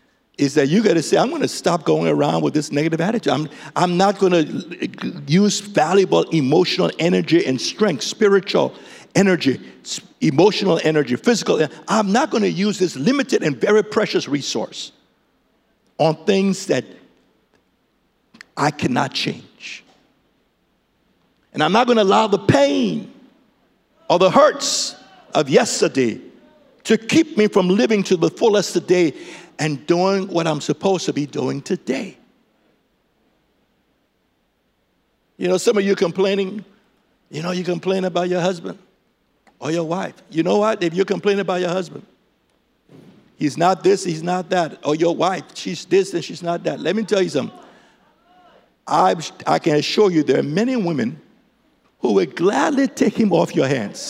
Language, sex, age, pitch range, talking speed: English, male, 60-79, 165-210 Hz, 155 wpm